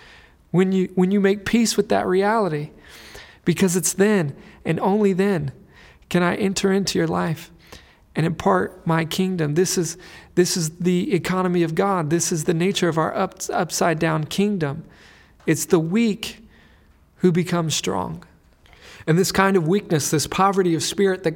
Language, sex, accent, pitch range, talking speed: English, male, American, 135-175 Hz, 165 wpm